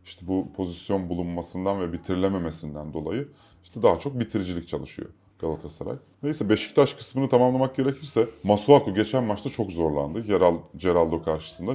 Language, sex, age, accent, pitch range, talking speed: Turkish, male, 30-49, native, 85-120 Hz, 130 wpm